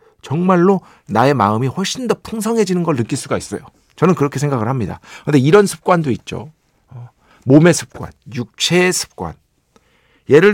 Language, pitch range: Korean, 125-205 Hz